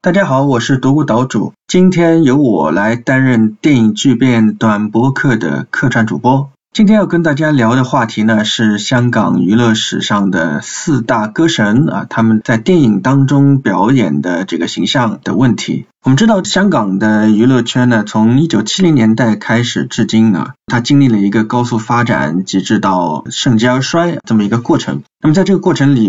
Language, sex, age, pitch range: Chinese, male, 20-39, 110-140 Hz